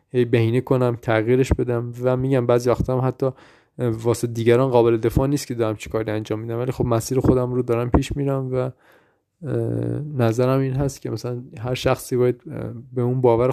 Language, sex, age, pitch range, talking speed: Persian, male, 20-39, 115-130 Hz, 180 wpm